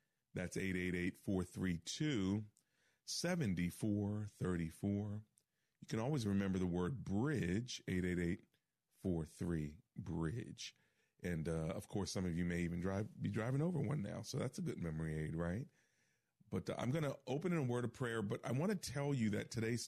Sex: male